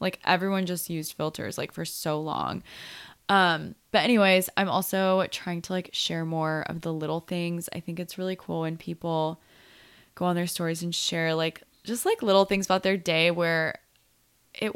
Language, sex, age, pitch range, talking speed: English, female, 20-39, 165-195 Hz, 185 wpm